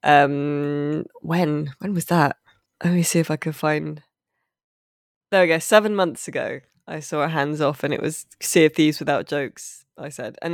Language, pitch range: English, 145-175 Hz